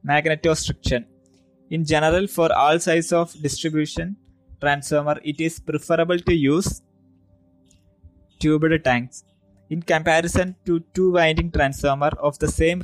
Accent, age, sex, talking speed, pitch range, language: native, 20-39, male, 115 wpm, 135-165 Hz, Malayalam